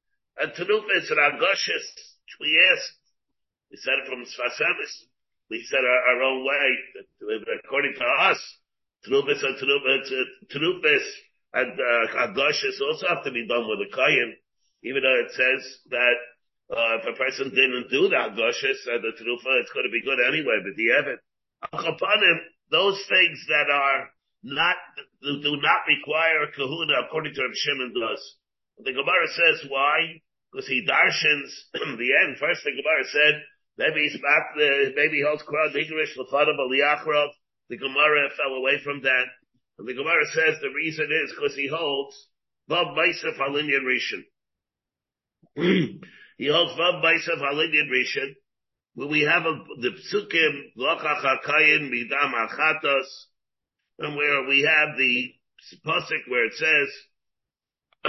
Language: English